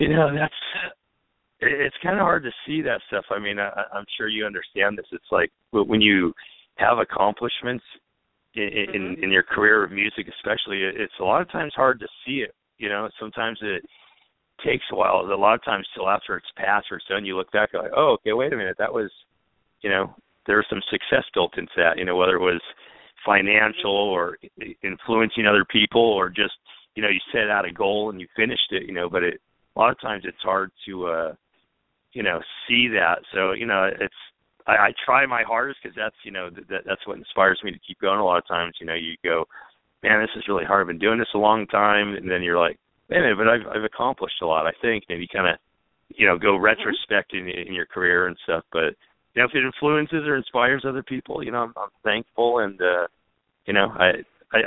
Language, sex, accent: English, male, American